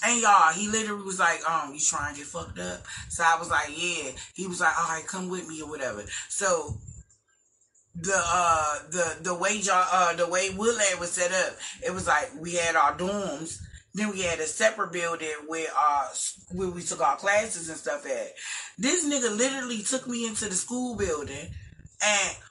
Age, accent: 30-49, American